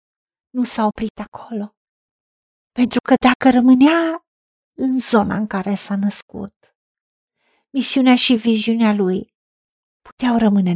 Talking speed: 110 wpm